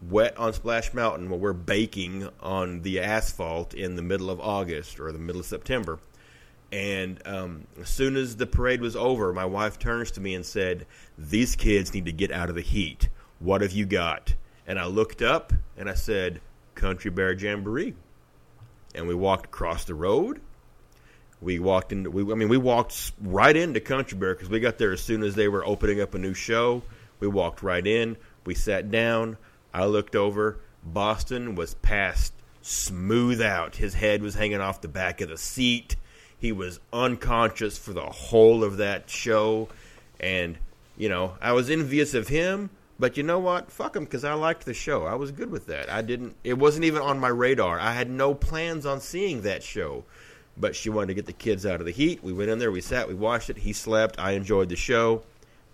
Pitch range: 90-115 Hz